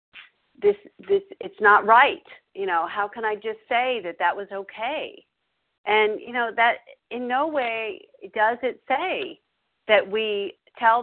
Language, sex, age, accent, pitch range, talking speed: English, female, 50-69, American, 185-245 Hz, 160 wpm